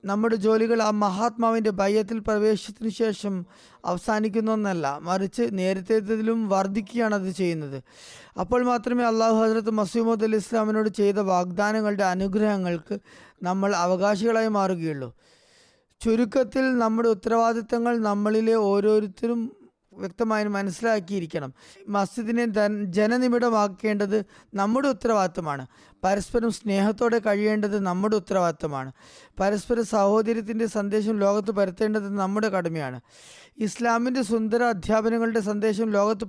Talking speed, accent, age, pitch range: 85 wpm, native, 20-39, 195-230 Hz